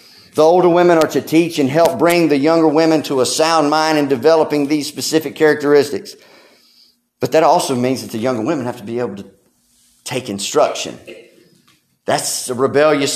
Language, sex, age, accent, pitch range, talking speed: English, male, 40-59, American, 145-210 Hz, 180 wpm